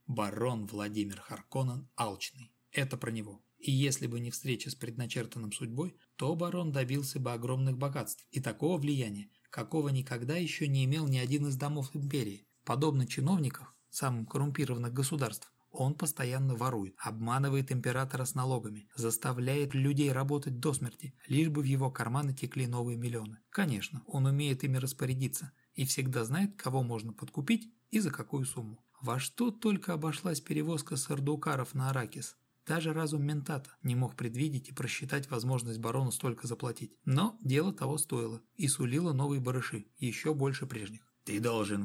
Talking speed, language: 155 wpm, Russian